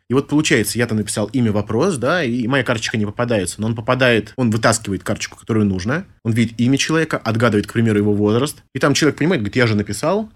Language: Russian